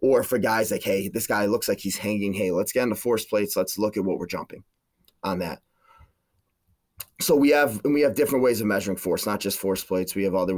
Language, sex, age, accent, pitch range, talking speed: English, male, 30-49, American, 100-140 Hz, 245 wpm